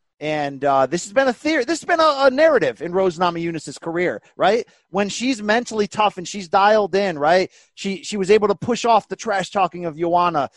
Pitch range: 170-240 Hz